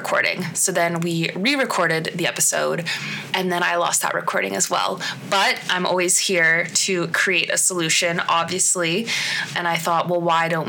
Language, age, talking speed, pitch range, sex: English, 20-39, 170 wpm, 170-200 Hz, female